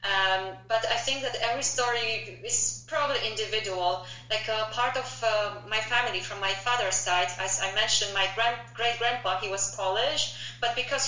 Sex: female